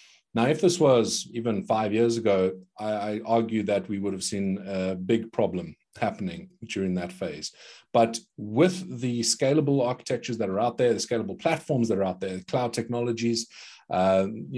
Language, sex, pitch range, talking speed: English, male, 110-140 Hz, 175 wpm